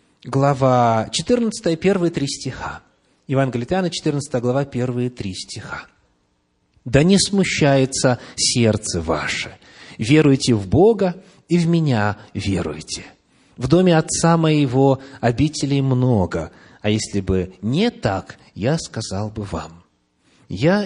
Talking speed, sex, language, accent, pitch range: 115 wpm, male, Russian, native, 110-175 Hz